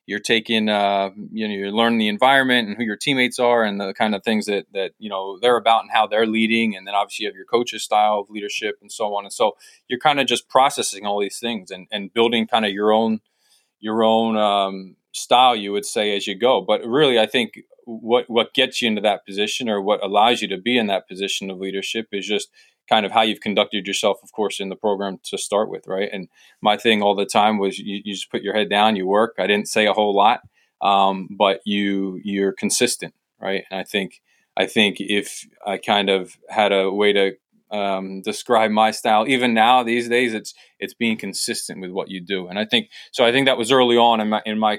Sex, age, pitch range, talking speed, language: male, 20-39, 100-115 Hz, 240 wpm, English